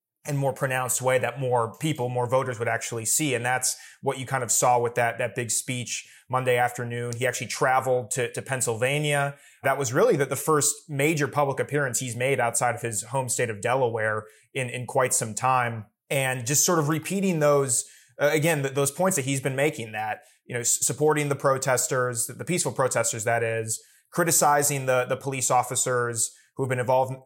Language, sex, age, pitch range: English, male, 30-49, 120-140 Hz